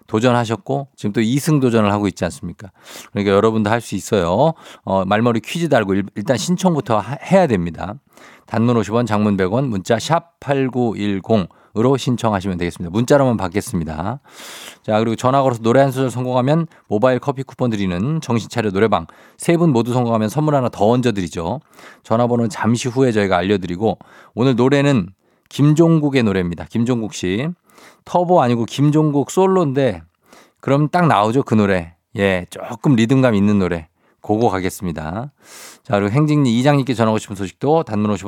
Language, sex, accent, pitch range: Korean, male, native, 100-135 Hz